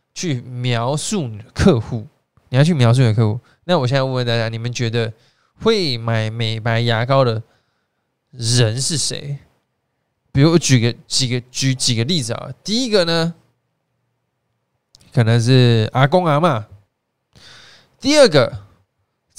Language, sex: Chinese, male